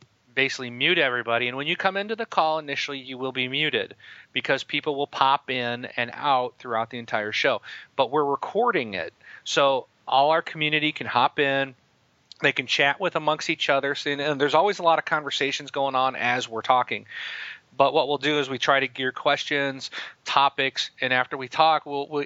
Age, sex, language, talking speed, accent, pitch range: 40-59, male, English, 195 wpm, American, 120-140 Hz